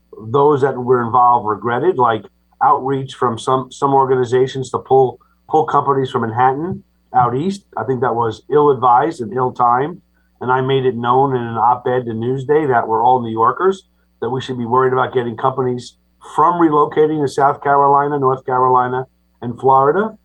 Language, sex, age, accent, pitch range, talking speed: English, male, 50-69, American, 115-140 Hz, 170 wpm